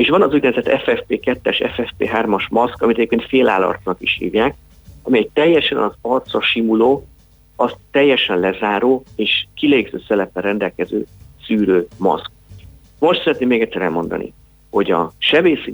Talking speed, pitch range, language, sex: 135 wpm, 95-120 Hz, Hungarian, male